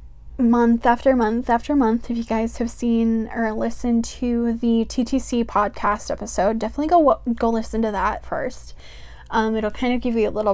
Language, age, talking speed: English, 10-29, 180 wpm